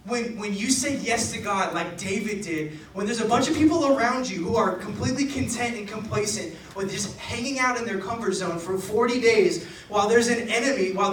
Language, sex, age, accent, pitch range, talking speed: English, male, 20-39, American, 190-255 Hz, 215 wpm